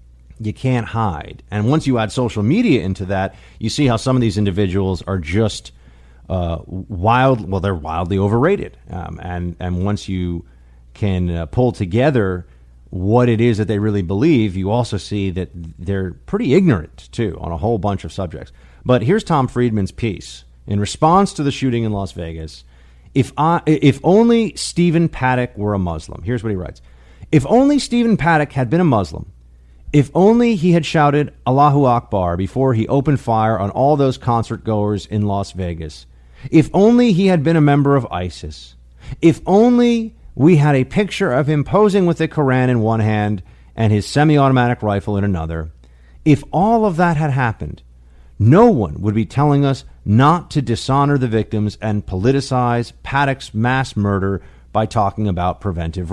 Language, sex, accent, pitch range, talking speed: English, male, American, 90-135 Hz, 175 wpm